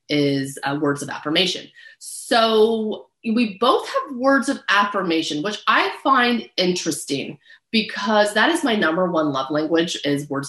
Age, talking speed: 30-49, 150 wpm